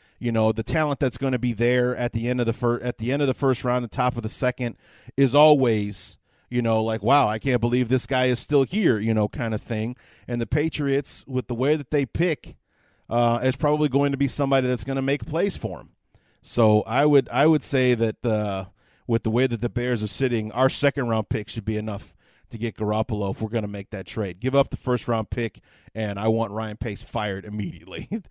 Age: 40-59